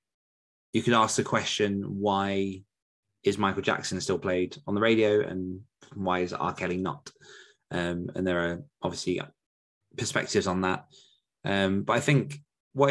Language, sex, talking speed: English, male, 155 wpm